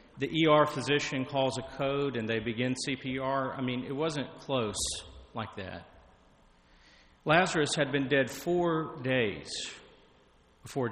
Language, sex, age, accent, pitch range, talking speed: English, male, 40-59, American, 120-150 Hz, 130 wpm